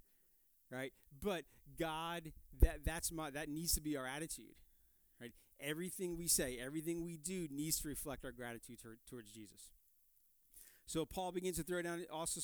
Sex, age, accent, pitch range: male, 40-59, American, 120-160 Hz